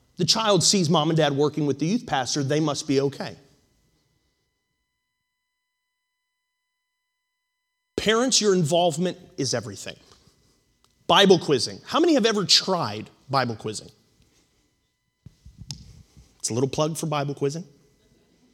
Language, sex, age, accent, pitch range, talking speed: English, male, 30-49, American, 145-225 Hz, 115 wpm